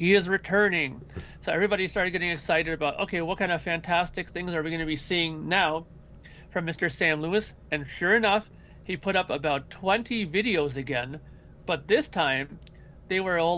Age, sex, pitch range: 40-59, male, 155-185 Hz